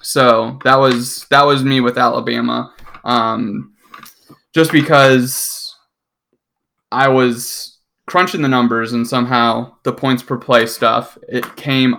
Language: English